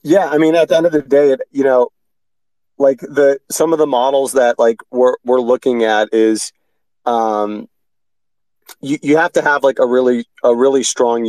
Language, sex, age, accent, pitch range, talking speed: English, male, 30-49, American, 115-135 Hz, 190 wpm